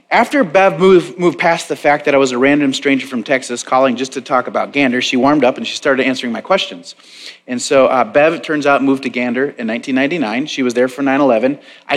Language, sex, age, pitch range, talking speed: English, male, 30-49, 125-155 Hz, 235 wpm